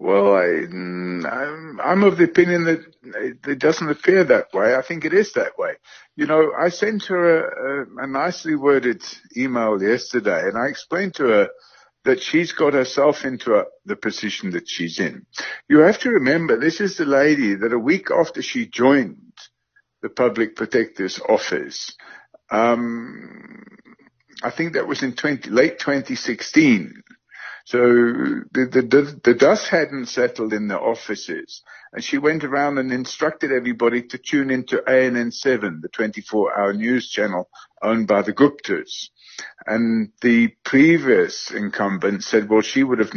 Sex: female